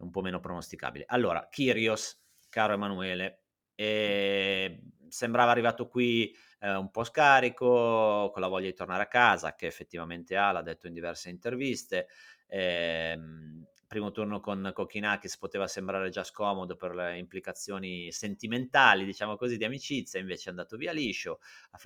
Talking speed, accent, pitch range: 150 wpm, native, 95-115 Hz